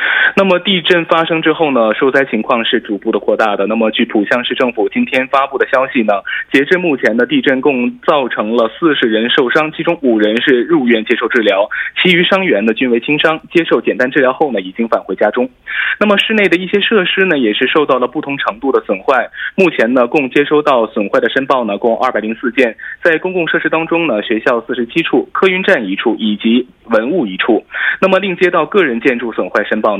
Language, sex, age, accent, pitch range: Korean, male, 20-39, Chinese, 130-200 Hz